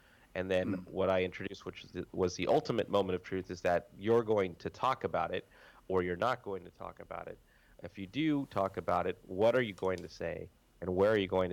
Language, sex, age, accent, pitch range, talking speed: Swedish, male, 30-49, American, 95-110 Hz, 240 wpm